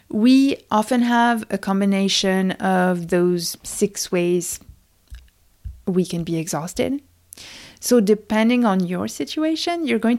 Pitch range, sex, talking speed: 180-230 Hz, female, 120 wpm